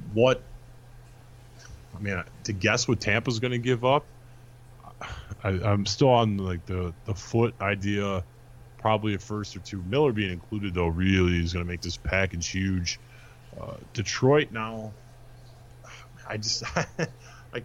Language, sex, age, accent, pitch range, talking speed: English, male, 20-39, American, 100-120 Hz, 145 wpm